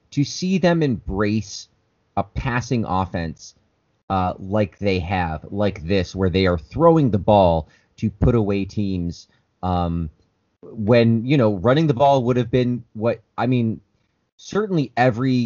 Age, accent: 30-49, American